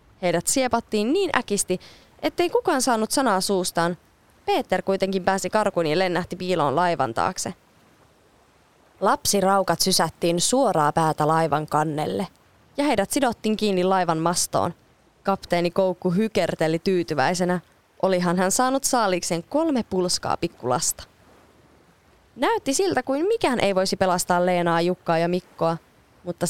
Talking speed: 120 wpm